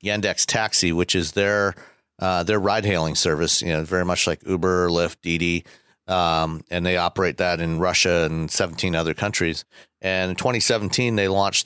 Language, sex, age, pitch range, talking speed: English, male, 40-59, 85-105 Hz, 175 wpm